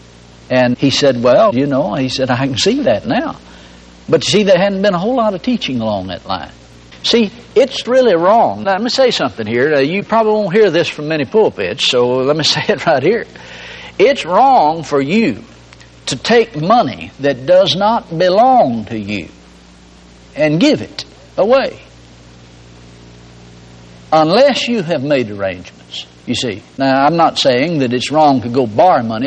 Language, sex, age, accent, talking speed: English, male, 60-79, American, 180 wpm